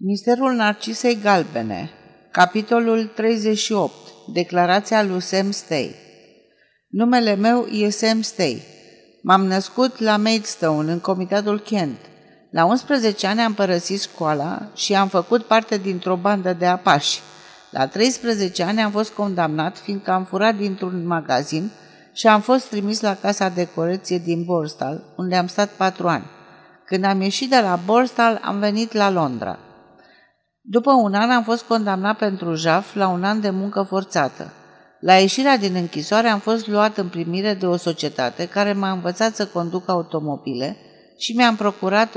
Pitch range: 180-215 Hz